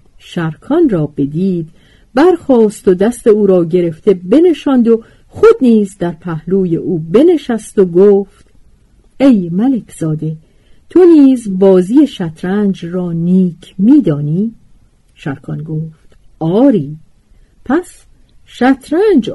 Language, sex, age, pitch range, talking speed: Persian, female, 50-69, 160-250 Hz, 105 wpm